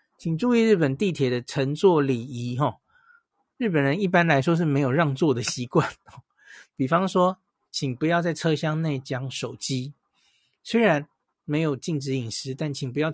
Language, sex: Chinese, male